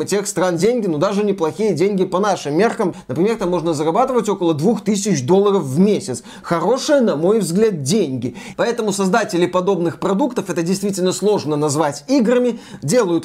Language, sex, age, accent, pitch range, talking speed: Russian, male, 20-39, native, 185-240 Hz, 155 wpm